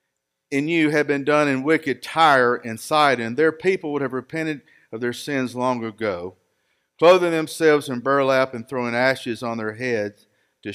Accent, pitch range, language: American, 120-165 Hz, English